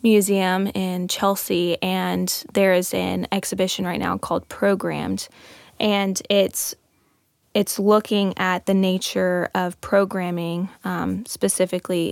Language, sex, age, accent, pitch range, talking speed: English, female, 20-39, American, 180-200 Hz, 115 wpm